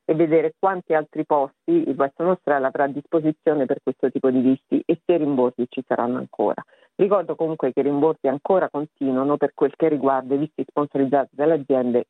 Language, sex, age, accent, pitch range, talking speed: Italian, female, 50-69, native, 140-180 Hz, 195 wpm